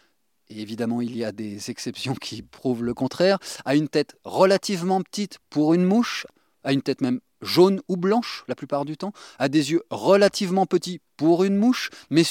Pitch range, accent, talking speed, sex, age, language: 130-185 Hz, French, 190 wpm, male, 30-49, French